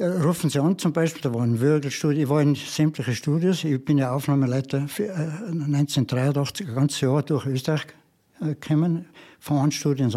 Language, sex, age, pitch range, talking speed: German, male, 60-79, 130-155 Hz, 175 wpm